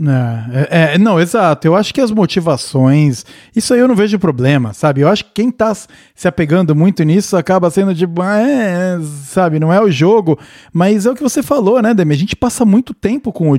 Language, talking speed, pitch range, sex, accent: Portuguese, 220 wpm, 155-225 Hz, male, Brazilian